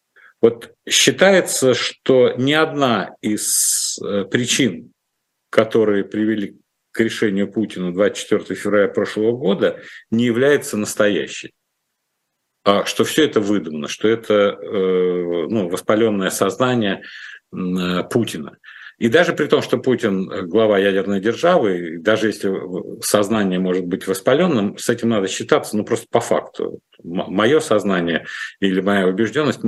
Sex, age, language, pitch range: male, 50-69, Russian, 100-125 Hz